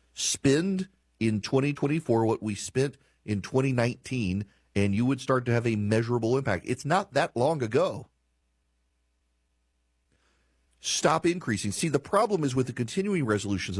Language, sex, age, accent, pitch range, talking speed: English, male, 40-59, American, 100-145 Hz, 140 wpm